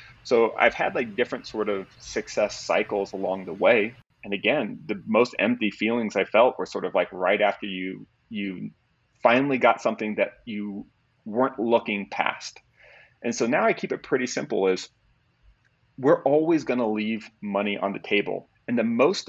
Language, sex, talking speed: English, male, 175 wpm